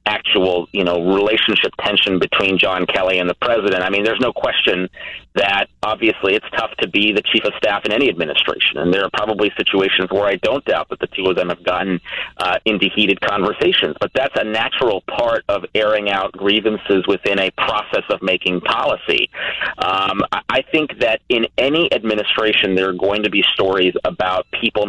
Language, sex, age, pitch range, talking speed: English, male, 30-49, 95-115 Hz, 190 wpm